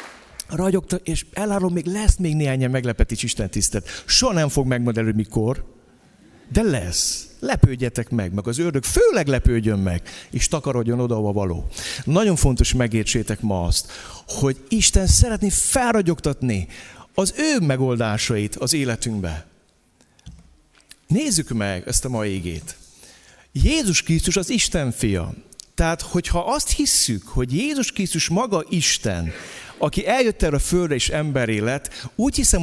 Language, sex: Hungarian, male